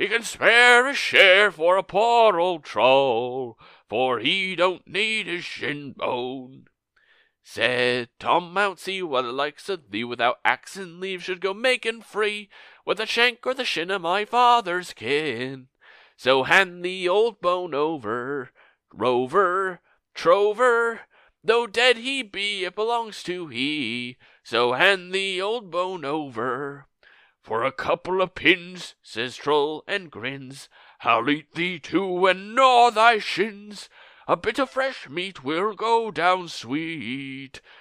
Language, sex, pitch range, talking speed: English, male, 145-215 Hz, 140 wpm